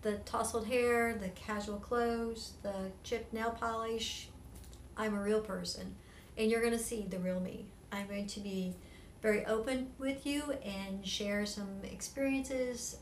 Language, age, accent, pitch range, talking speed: English, 60-79, American, 200-240 Hz, 150 wpm